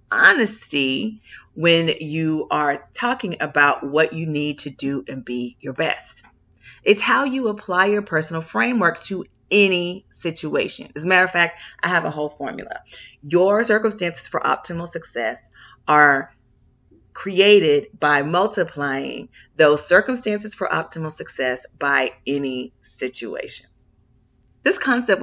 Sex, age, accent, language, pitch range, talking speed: female, 40-59, American, English, 145-200 Hz, 130 wpm